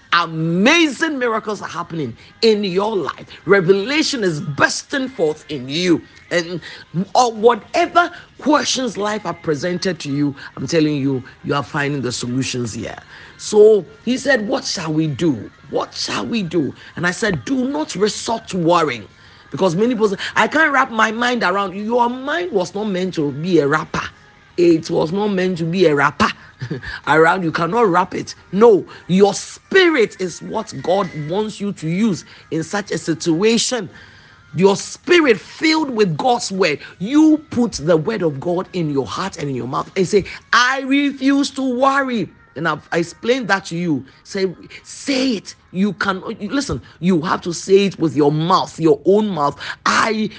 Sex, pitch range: male, 165-240 Hz